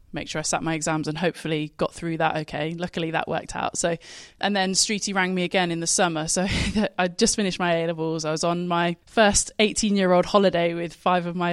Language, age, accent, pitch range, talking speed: English, 20-39, British, 160-185 Hz, 235 wpm